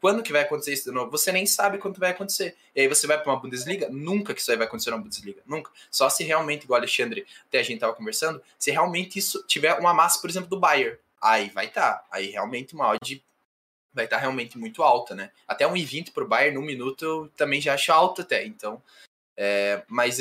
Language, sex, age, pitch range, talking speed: Portuguese, male, 10-29, 140-200 Hz, 235 wpm